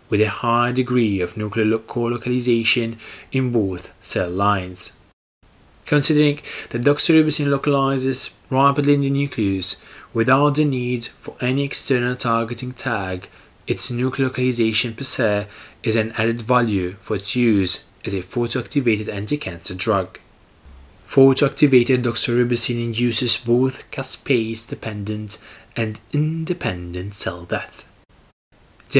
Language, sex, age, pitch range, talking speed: English, male, 20-39, 105-135 Hz, 120 wpm